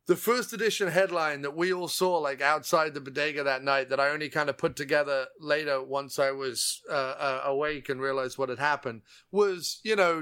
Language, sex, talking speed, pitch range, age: English, male, 210 wpm, 140-180 Hz, 30-49